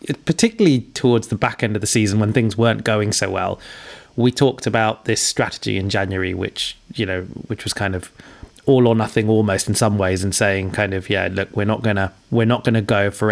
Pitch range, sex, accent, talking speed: 110-135 Hz, male, British, 220 wpm